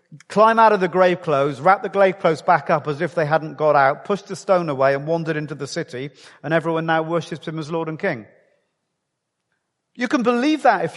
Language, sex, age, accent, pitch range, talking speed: English, male, 40-59, British, 140-180 Hz, 225 wpm